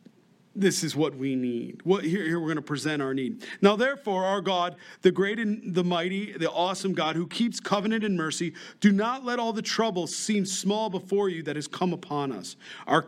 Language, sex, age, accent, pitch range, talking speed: English, male, 40-59, American, 150-200 Hz, 215 wpm